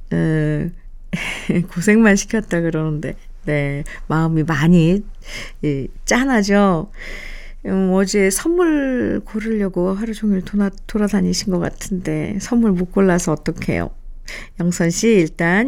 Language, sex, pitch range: Korean, female, 175-235 Hz